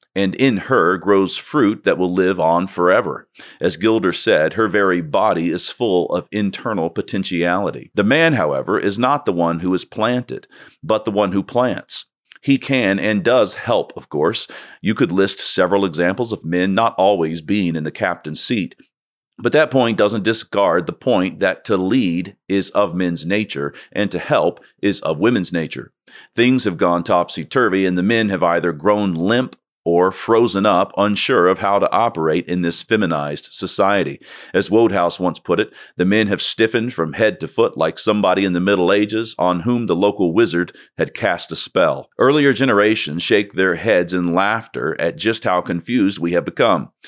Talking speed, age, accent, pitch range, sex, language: 180 wpm, 40-59, American, 85-110 Hz, male, English